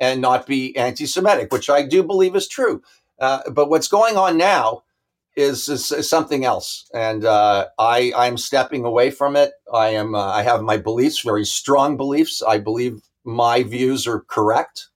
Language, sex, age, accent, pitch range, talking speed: English, male, 50-69, American, 120-165 Hz, 175 wpm